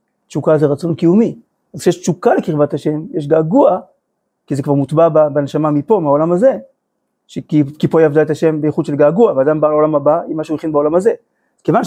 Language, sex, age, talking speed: Hebrew, male, 30-49, 195 wpm